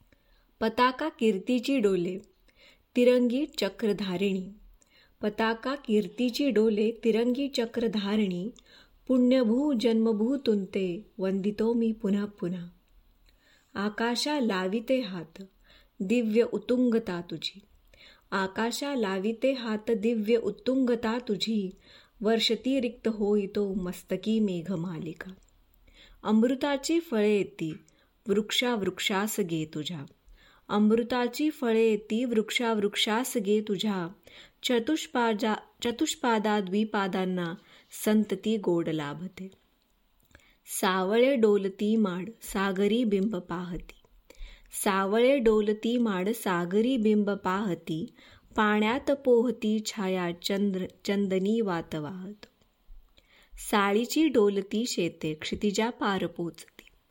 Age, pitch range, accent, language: 20-39, 195-235 Hz, native, Marathi